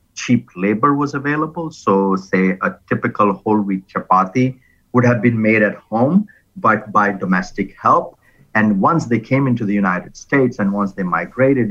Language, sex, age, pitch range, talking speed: English, male, 50-69, 95-130 Hz, 170 wpm